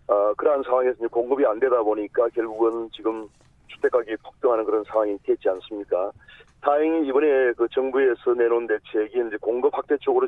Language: Korean